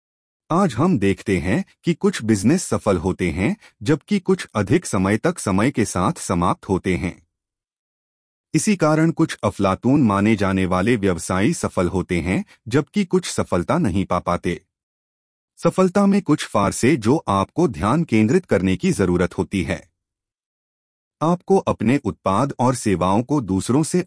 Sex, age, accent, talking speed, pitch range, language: male, 30-49, native, 145 wpm, 90-140 Hz, Hindi